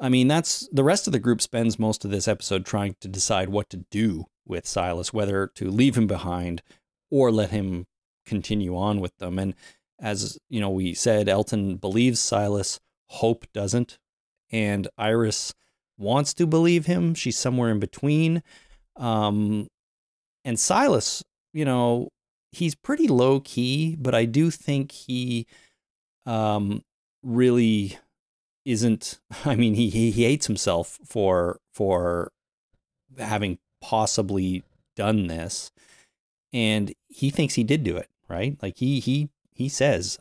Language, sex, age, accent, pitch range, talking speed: English, male, 30-49, American, 100-125 Hz, 145 wpm